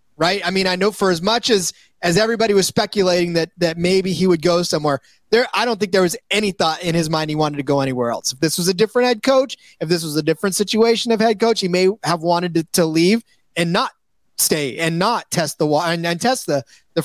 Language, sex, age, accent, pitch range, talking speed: English, male, 30-49, American, 165-210 Hz, 255 wpm